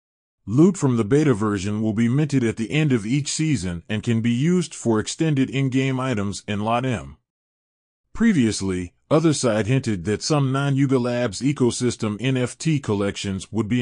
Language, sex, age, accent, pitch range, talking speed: English, male, 30-49, American, 110-145 Hz, 160 wpm